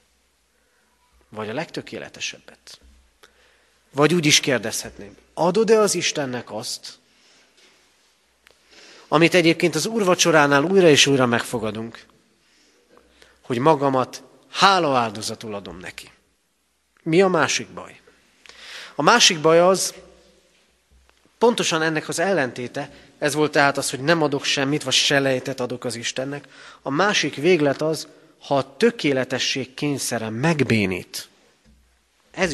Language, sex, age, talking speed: Hungarian, male, 30-49, 115 wpm